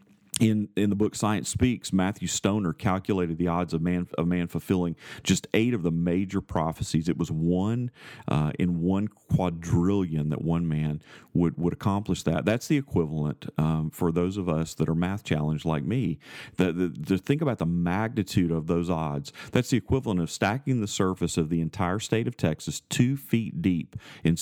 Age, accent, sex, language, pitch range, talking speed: 40-59, American, male, English, 85-105 Hz, 190 wpm